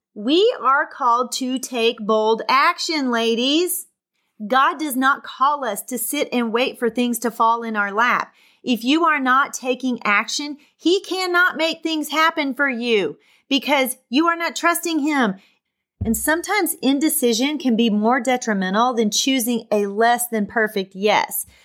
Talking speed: 160 wpm